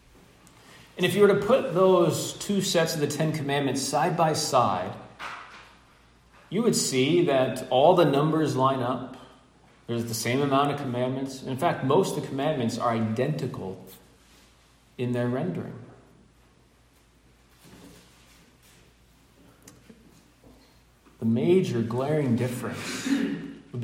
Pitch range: 110-140 Hz